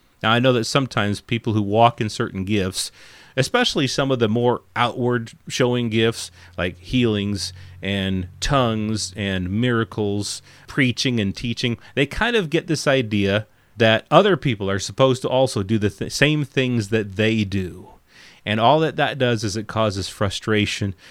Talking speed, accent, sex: 160 wpm, American, male